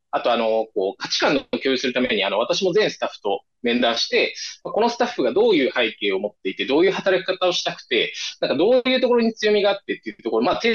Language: Japanese